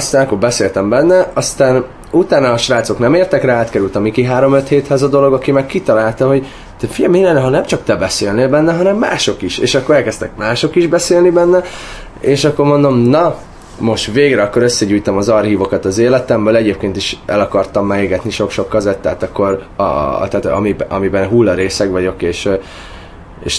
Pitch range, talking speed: 100-140 Hz, 180 wpm